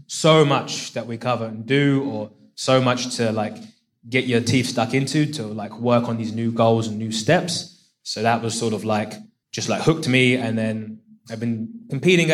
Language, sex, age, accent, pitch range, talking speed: English, male, 20-39, British, 115-140 Hz, 205 wpm